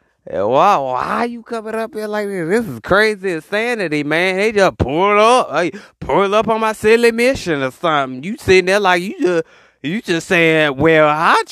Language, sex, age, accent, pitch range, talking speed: English, male, 30-49, American, 155-235 Hz, 205 wpm